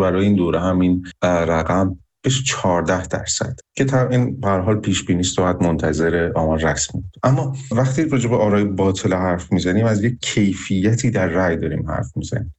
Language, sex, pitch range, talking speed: Persian, male, 95-120 Hz, 170 wpm